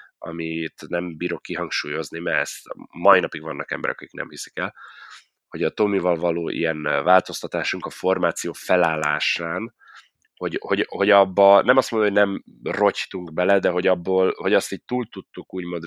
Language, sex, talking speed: Hungarian, male, 165 wpm